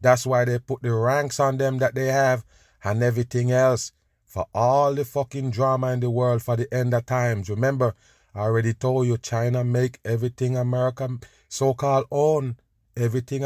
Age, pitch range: 30-49, 115-140 Hz